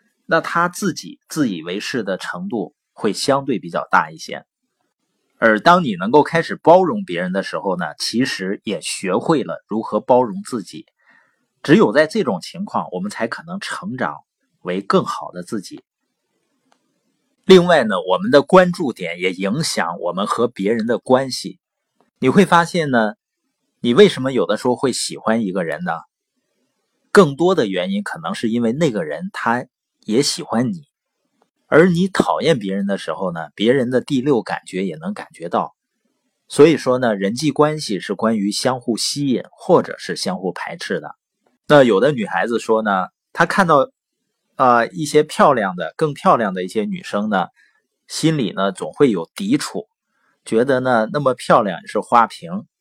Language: Chinese